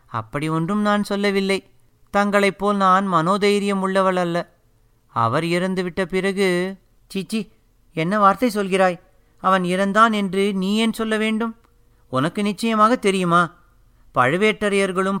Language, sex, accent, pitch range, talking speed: Tamil, male, native, 160-205 Hz, 110 wpm